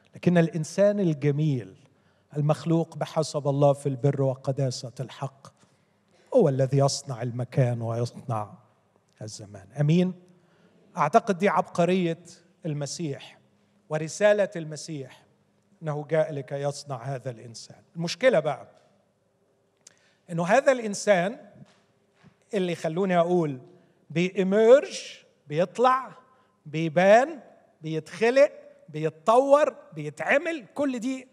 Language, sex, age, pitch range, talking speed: Arabic, male, 40-59, 155-230 Hz, 85 wpm